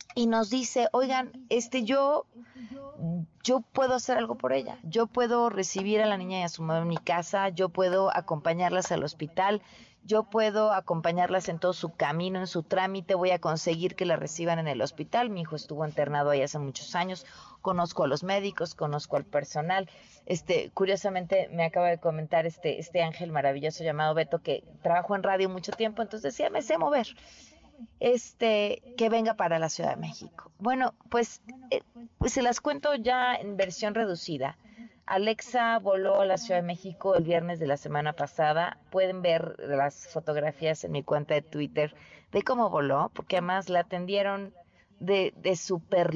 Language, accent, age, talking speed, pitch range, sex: Spanish, Mexican, 30-49, 180 wpm, 165-220 Hz, female